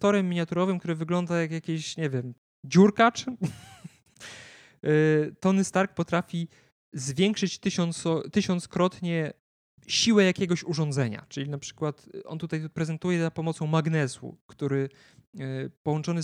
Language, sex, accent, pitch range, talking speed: Polish, male, native, 135-170 Hz, 105 wpm